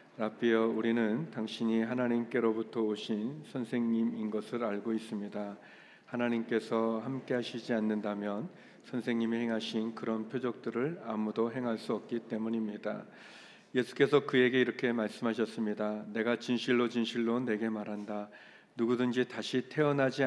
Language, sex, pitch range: Korean, male, 110-125 Hz